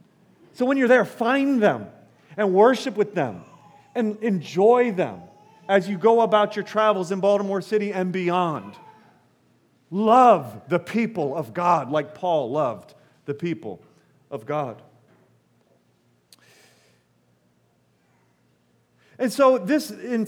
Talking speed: 120 wpm